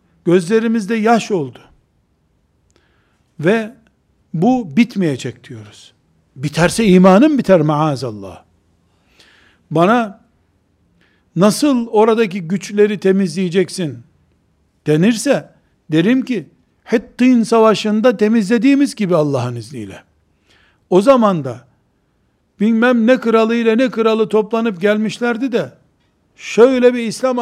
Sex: male